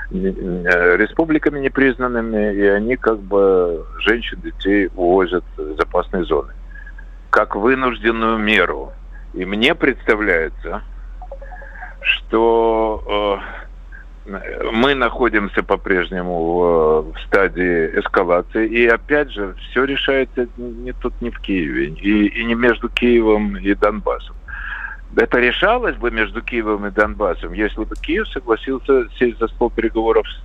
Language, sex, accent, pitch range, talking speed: Russian, male, native, 105-140 Hz, 110 wpm